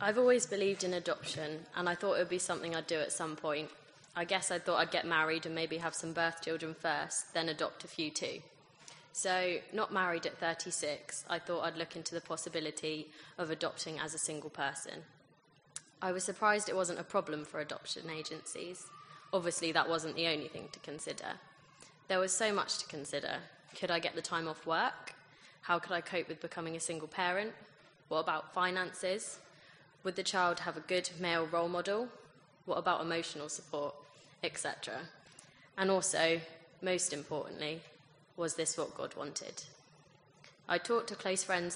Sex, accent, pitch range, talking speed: female, British, 155-180 Hz, 180 wpm